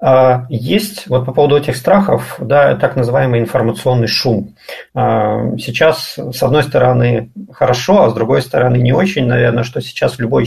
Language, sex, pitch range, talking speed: Russian, male, 115-145 Hz, 145 wpm